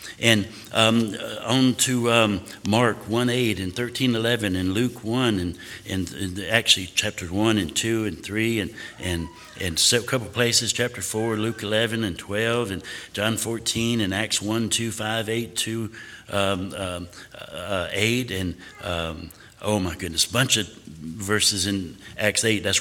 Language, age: English, 60-79